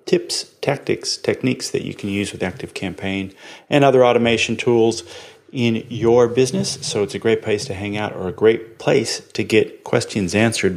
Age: 30-49